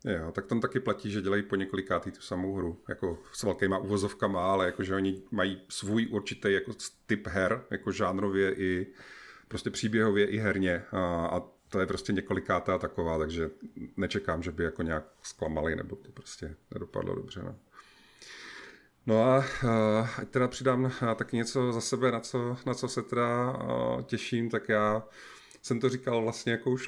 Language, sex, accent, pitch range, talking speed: Czech, male, native, 95-115 Hz, 170 wpm